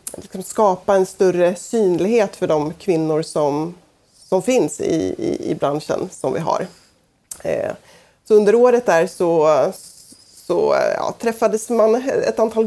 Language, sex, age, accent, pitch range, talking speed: Swedish, female, 30-49, native, 170-215 Hz, 140 wpm